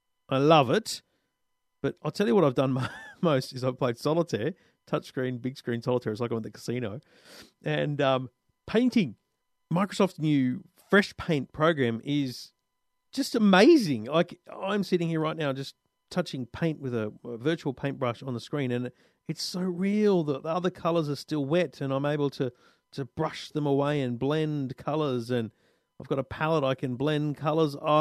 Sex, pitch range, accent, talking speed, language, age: male, 125-165 Hz, Australian, 185 wpm, English, 40-59